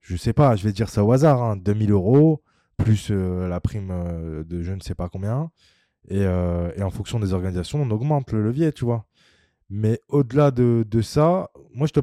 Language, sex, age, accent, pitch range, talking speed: French, male, 20-39, French, 95-120 Hz, 220 wpm